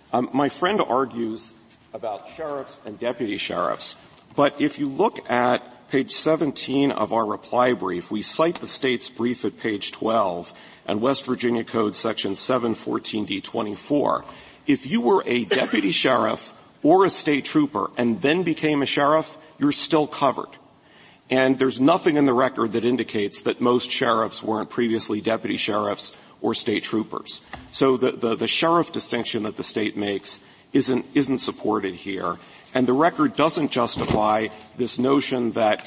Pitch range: 110-140 Hz